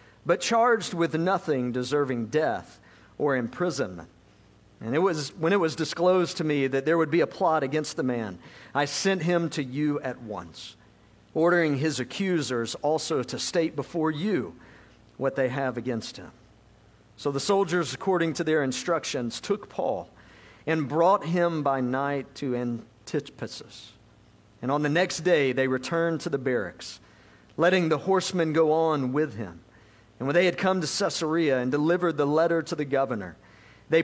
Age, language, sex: 50-69, English, male